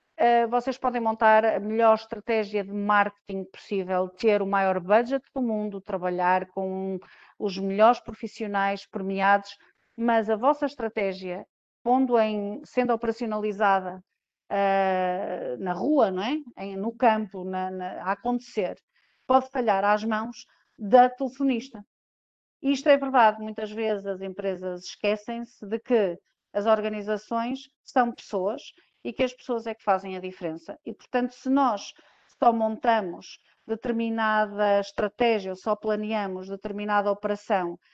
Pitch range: 200-235 Hz